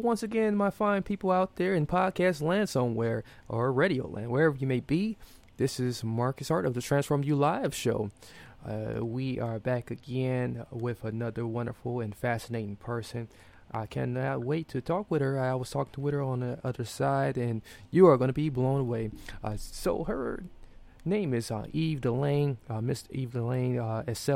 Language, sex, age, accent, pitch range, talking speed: English, male, 20-39, American, 115-140 Hz, 190 wpm